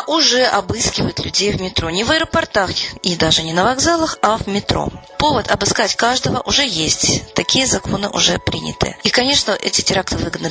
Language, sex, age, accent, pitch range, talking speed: Russian, female, 30-49, native, 170-225 Hz, 170 wpm